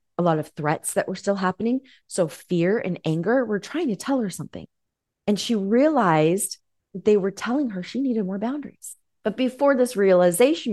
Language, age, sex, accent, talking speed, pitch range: English, 30-49, female, American, 185 wpm, 170-240 Hz